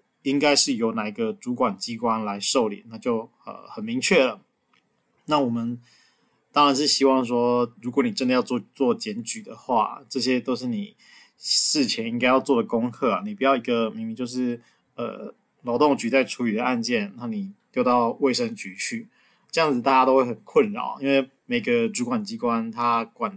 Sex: male